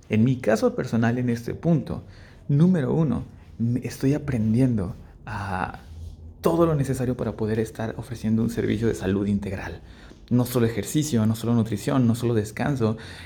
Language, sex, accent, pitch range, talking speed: Spanish, male, Mexican, 100-120 Hz, 150 wpm